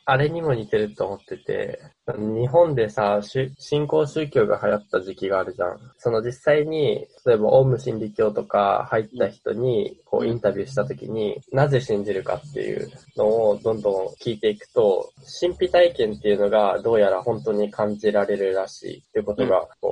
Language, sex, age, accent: Japanese, male, 10-29, native